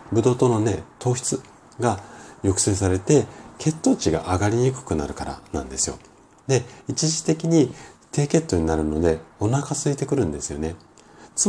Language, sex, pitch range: Japanese, male, 80-120 Hz